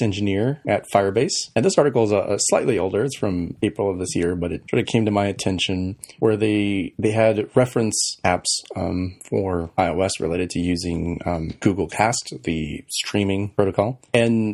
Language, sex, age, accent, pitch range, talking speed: English, male, 30-49, American, 95-115 Hz, 180 wpm